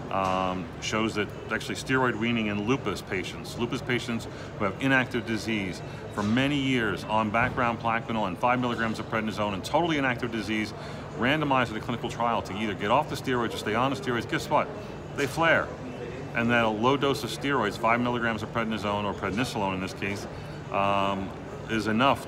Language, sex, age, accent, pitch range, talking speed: English, male, 40-59, American, 100-120 Hz, 185 wpm